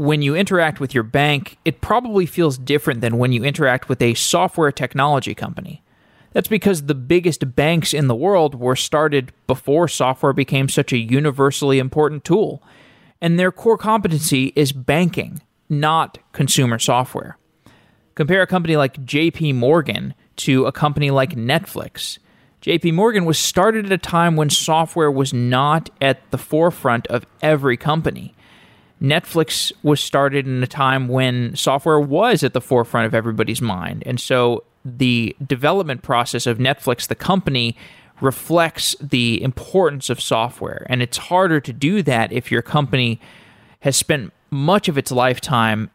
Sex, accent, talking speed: male, American, 155 wpm